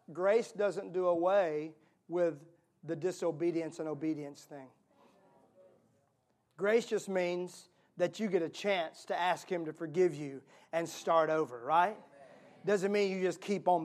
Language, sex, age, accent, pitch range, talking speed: English, male, 40-59, American, 155-220 Hz, 145 wpm